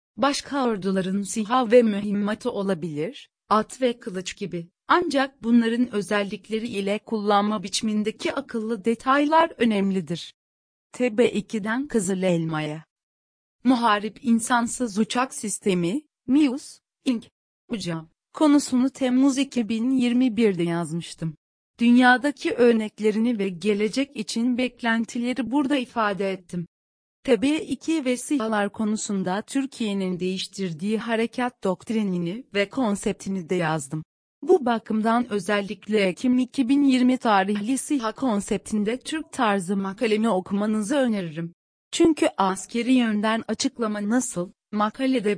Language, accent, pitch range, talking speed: Turkish, native, 195-250 Hz, 95 wpm